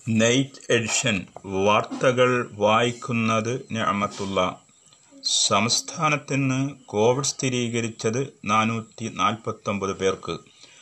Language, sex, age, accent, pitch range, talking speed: Malayalam, male, 30-49, native, 105-135 Hz, 60 wpm